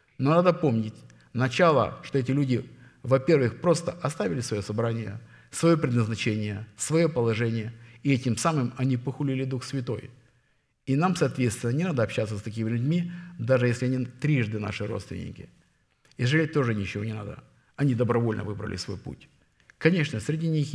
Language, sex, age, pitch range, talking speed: Russian, male, 50-69, 105-130 Hz, 150 wpm